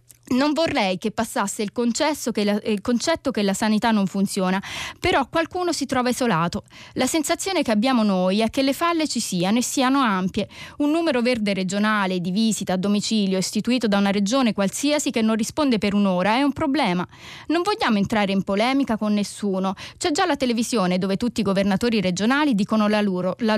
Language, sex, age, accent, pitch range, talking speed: Italian, female, 20-39, native, 195-290 Hz, 180 wpm